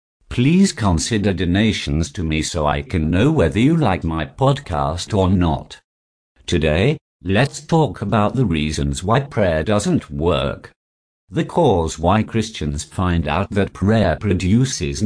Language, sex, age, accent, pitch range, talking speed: English, male, 50-69, British, 75-115 Hz, 140 wpm